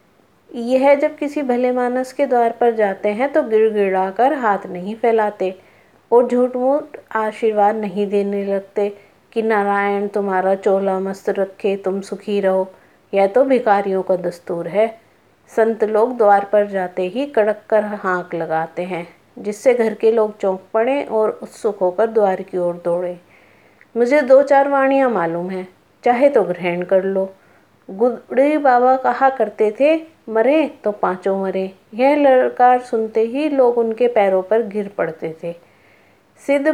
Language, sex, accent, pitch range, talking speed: Hindi, female, native, 190-250 Hz, 155 wpm